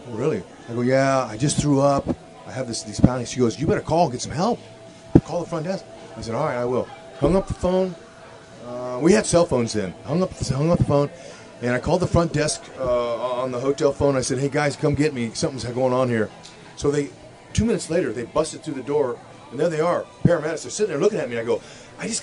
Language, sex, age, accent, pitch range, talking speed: English, male, 30-49, American, 130-190 Hz, 260 wpm